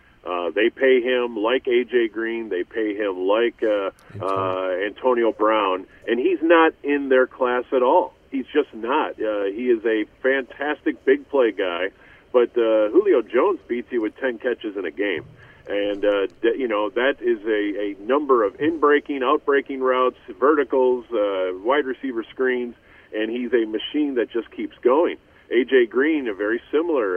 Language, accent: English, American